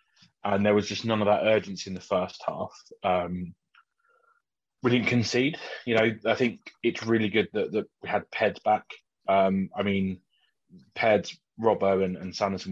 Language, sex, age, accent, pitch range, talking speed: English, male, 20-39, British, 95-110 Hz, 175 wpm